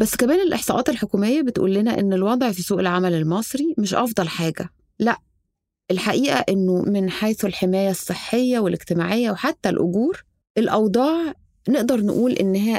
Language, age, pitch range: Arabic, 20-39, 180-235 Hz